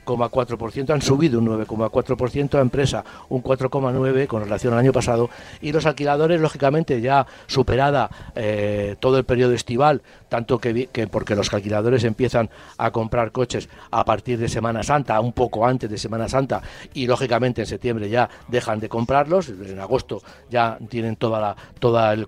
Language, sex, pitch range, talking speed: Spanish, male, 110-130 Hz, 165 wpm